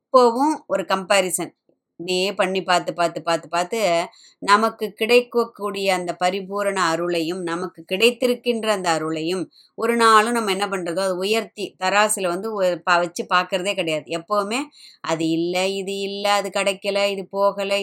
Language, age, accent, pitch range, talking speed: Tamil, 20-39, native, 180-225 Hz, 130 wpm